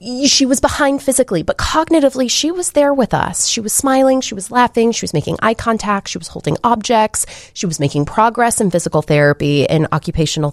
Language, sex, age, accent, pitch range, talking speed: English, female, 30-49, American, 140-180 Hz, 200 wpm